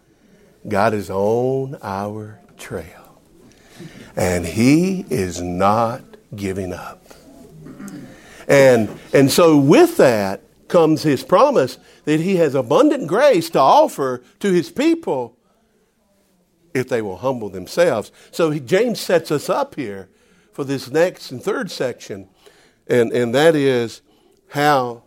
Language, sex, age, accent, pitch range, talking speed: English, male, 60-79, American, 115-175 Hz, 120 wpm